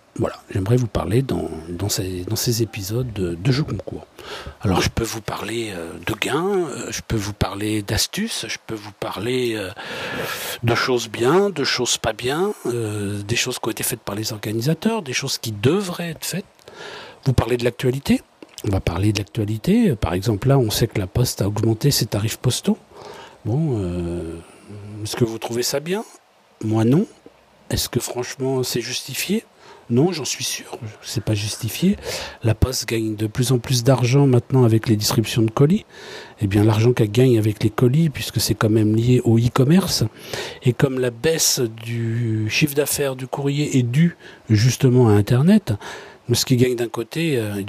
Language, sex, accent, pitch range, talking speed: French, male, French, 110-135 Hz, 185 wpm